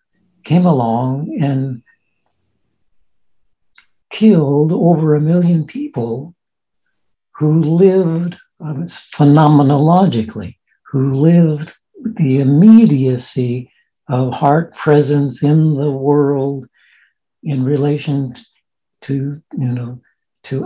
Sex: male